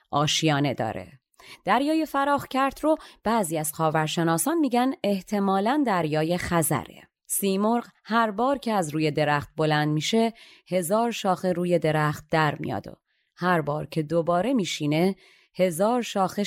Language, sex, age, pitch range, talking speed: Persian, female, 30-49, 155-210 Hz, 125 wpm